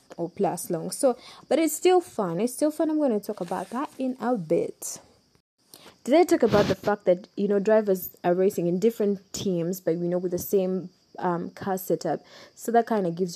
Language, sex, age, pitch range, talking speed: English, female, 20-39, 180-230 Hz, 225 wpm